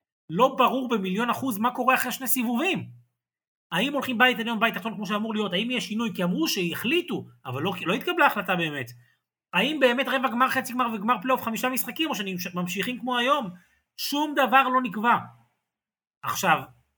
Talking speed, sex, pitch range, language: 175 wpm, male, 150-235 Hz, Hebrew